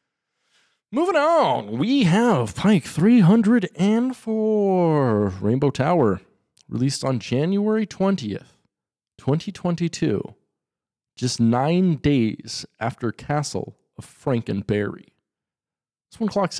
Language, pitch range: English, 110-170 Hz